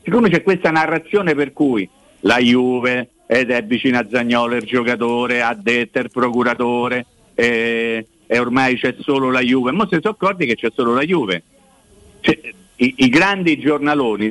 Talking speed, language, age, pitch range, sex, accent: 165 wpm, Italian, 50-69, 115-160 Hz, male, native